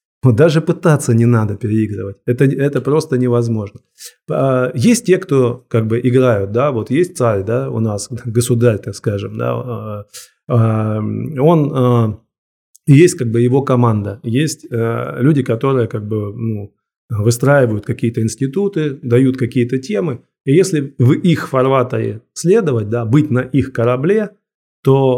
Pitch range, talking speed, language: 110-135 Hz, 100 wpm, Russian